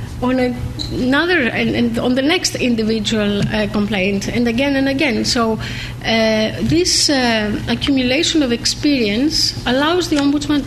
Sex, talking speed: female, 125 wpm